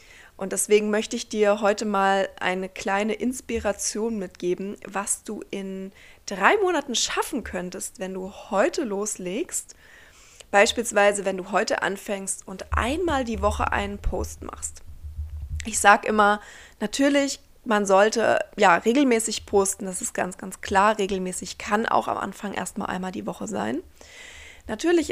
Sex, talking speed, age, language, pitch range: female, 140 wpm, 20-39, German, 195-225 Hz